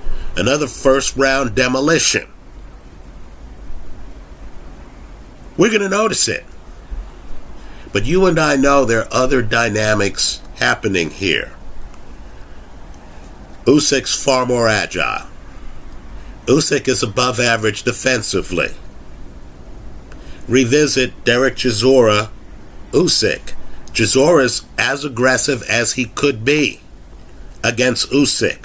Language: English